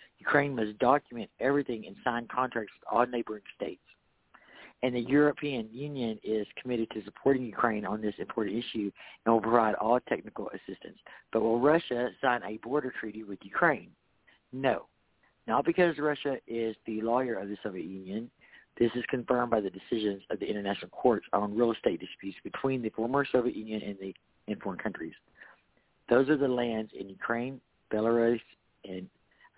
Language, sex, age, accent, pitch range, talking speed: English, male, 50-69, American, 105-130 Hz, 170 wpm